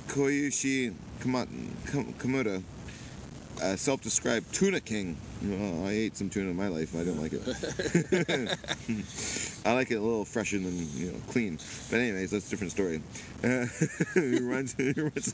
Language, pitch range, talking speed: English, 95-125 Hz, 155 wpm